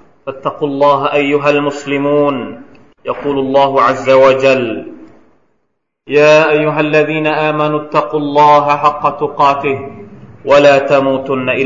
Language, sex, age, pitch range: Thai, male, 30-49, 135-155 Hz